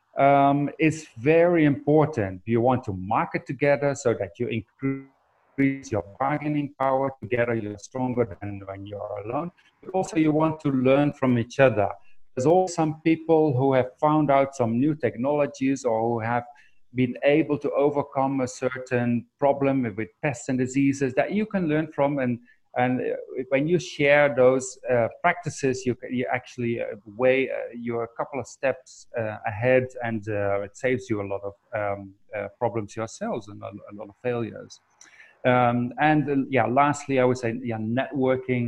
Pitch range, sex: 110-140 Hz, male